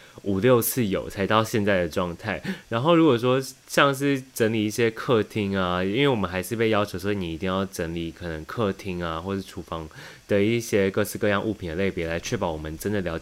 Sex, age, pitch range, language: male, 20-39, 90-120 Hz, Chinese